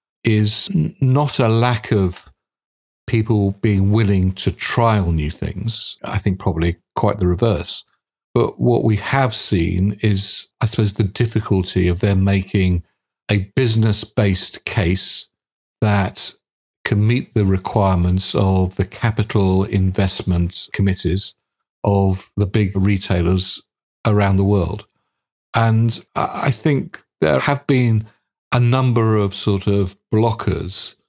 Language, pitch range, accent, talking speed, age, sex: English, 95-115 Hz, British, 120 wpm, 50-69, male